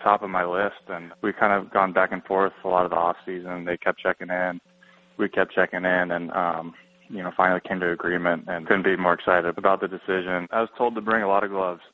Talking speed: 255 wpm